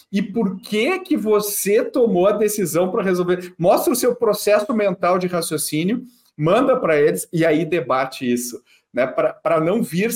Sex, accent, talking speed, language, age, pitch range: male, Brazilian, 165 wpm, Portuguese, 40-59, 135-210 Hz